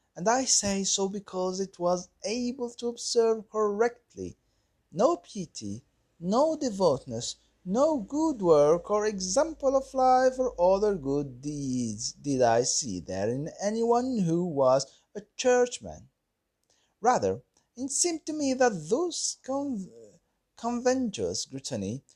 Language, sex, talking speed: French, male, 125 wpm